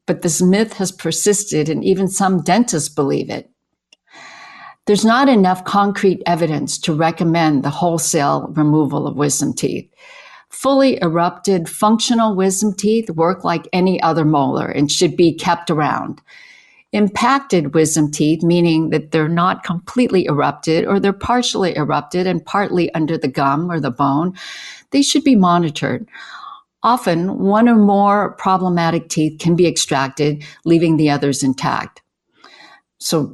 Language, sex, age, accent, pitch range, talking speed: English, female, 50-69, American, 155-200 Hz, 140 wpm